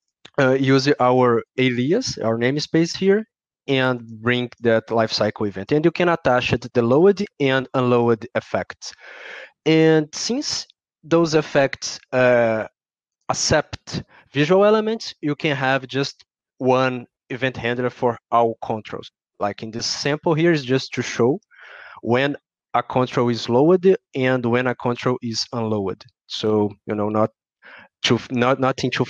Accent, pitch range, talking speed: Brazilian, 120-150 Hz, 140 wpm